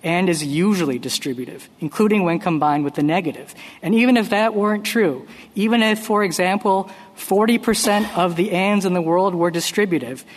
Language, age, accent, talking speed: English, 50-69, American, 175 wpm